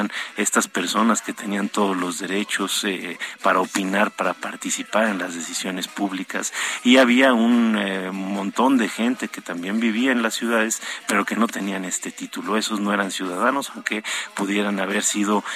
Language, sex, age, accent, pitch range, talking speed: Spanish, male, 40-59, Mexican, 100-130 Hz, 165 wpm